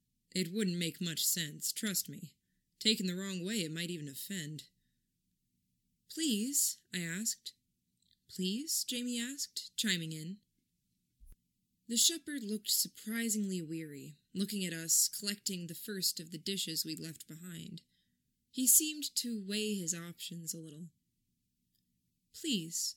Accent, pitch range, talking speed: American, 160-215 Hz, 130 wpm